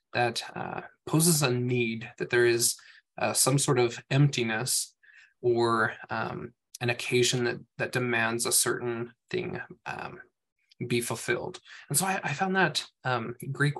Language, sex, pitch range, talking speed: English, male, 120-145 Hz, 150 wpm